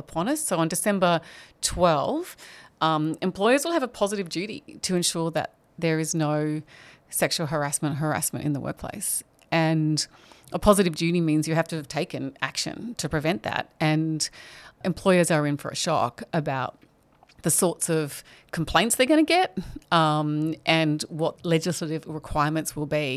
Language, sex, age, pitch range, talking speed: English, female, 30-49, 150-180 Hz, 160 wpm